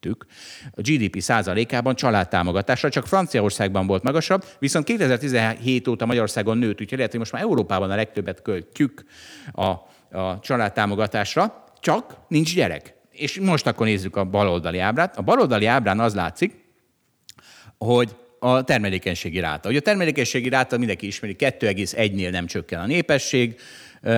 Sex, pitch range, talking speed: male, 95-130 Hz, 135 wpm